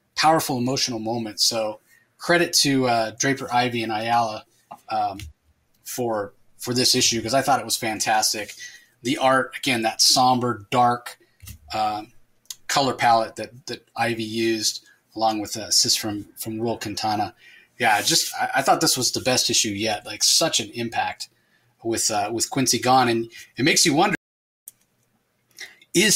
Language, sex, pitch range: English, male, 115-135 Hz